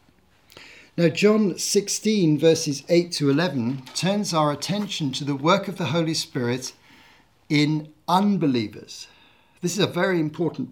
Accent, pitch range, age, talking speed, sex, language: British, 140-180 Hz, 50-69, 135 wpm, male, English